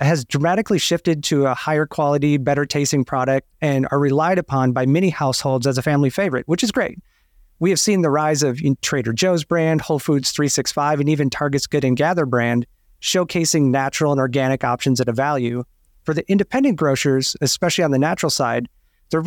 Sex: male